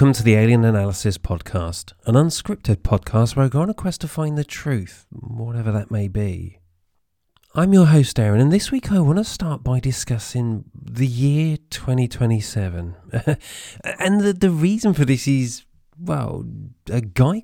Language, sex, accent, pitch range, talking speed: English, male, British, 110-155 Hz, 170 wpm